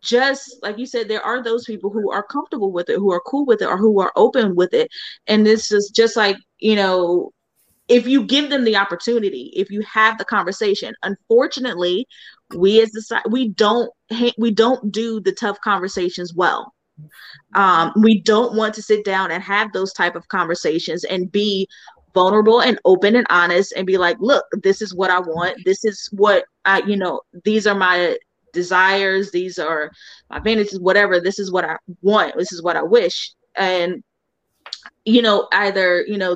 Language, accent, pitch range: English, American, 185-230 Hz